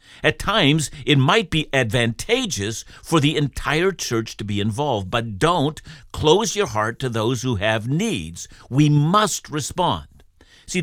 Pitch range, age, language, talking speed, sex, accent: 115-175 Hz, 60-79, English, 150 wpm, male, American